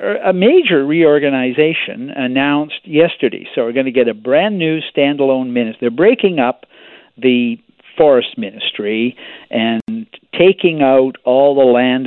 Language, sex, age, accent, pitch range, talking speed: English, male, 50-69, American, 120-165 Hz, 135 wpm